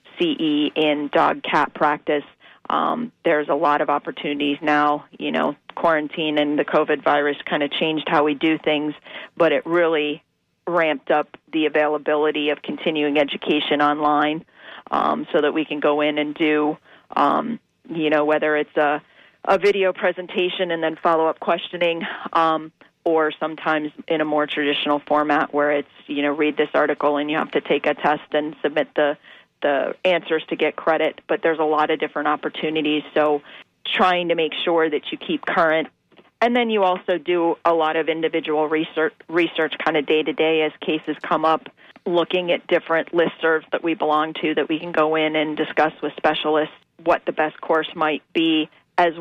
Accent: American